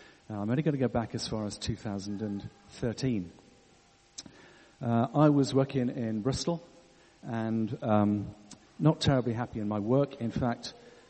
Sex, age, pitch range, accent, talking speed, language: male, 50-69, 110-135 Hz, British, 140 wpm, English